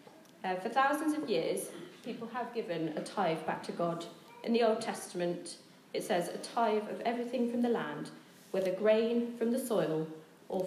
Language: English